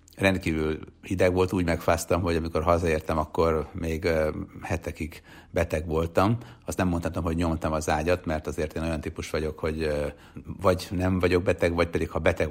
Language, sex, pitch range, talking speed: Hungarian, male, 80-90 Hz, 170 wpm